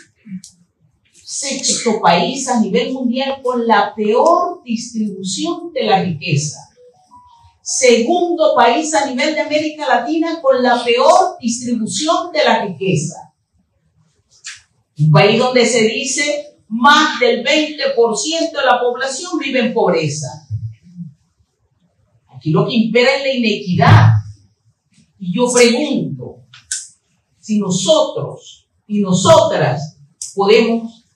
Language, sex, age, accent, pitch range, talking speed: Spanish, female, 40-59, American, 175-270 Hz, 105 wpm